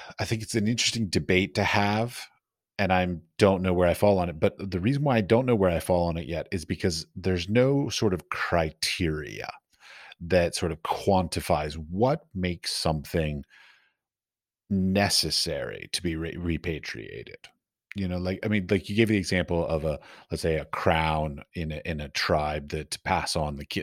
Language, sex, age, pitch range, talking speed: English, male, 40-59, 80-100 Hz, 190 wpm